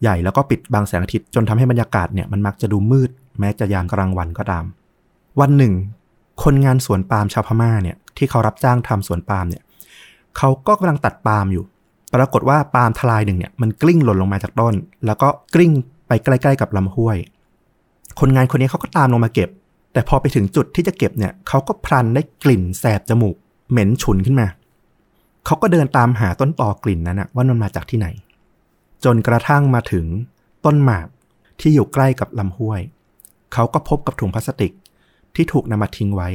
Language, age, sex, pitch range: Thai, 30-49, male, 100-135 Hz